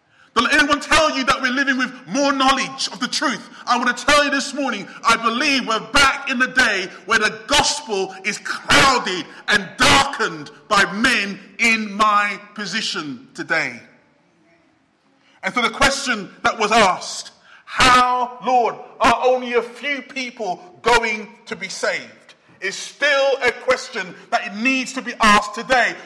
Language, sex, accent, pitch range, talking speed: English, male, British, 225-285 Hz, 160 wpm